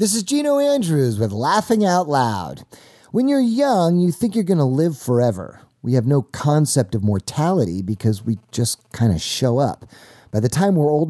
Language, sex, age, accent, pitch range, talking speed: English, male, 40-59, American, 110-150 Hz, 195 wpm